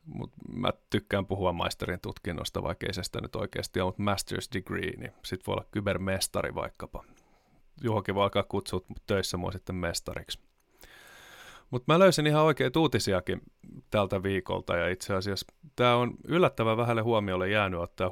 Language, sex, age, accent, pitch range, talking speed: Finnish, male, 30-49, native, 95-110 Hz, 155 wpm